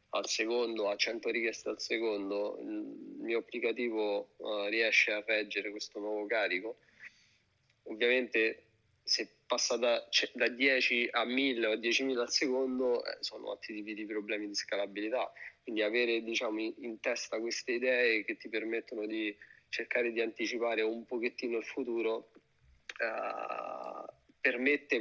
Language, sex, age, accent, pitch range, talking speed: Italian, male, 40-59, native, 105-120 Hz, 135 wpm